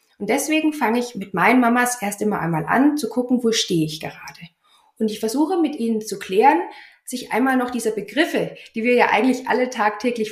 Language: German